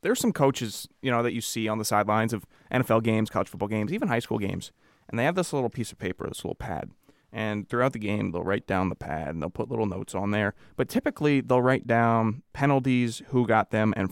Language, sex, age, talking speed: English, male, 20-39, 245 wpm